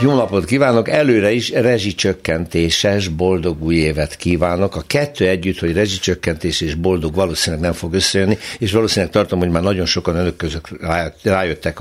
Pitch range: 80-100 Hz